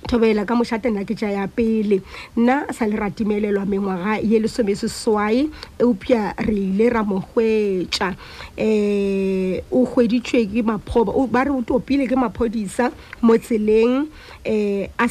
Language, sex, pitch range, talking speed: English, female, 200-235 Hz, 150 wpm